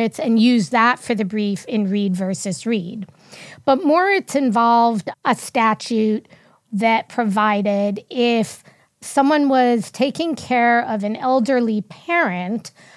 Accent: American